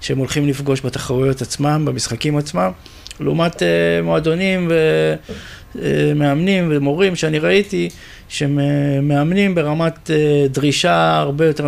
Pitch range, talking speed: 125-150 Hz, 90 wpm